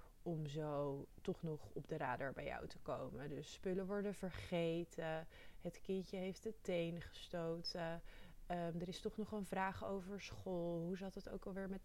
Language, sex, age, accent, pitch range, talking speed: Dutch, female, 20-39, Dutch, 160-190 Hz, 180 wpm